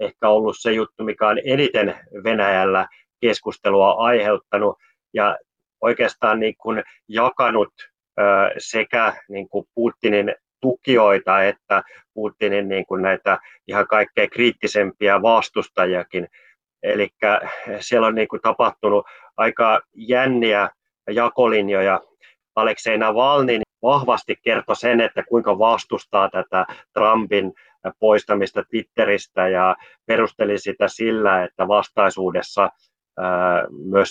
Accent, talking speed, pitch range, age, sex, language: native, 100 wpm, 95-115 Hz, 30-49, male, Finnish